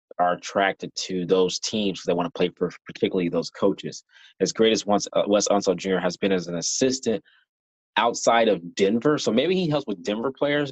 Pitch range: 90-100 Hz